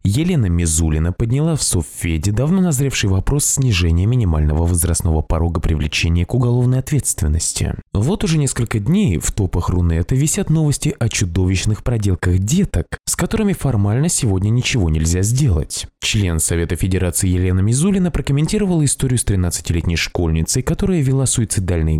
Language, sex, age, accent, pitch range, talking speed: Russian, male, 20-39, native, 85-145 Hz, 135 wpm